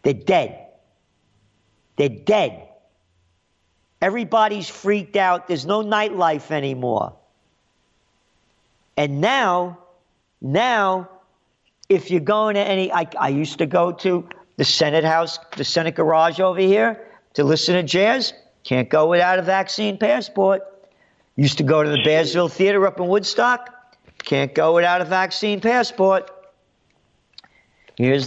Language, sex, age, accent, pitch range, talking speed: English, male, 50-69, American, 155-195 Hz, 125 wpm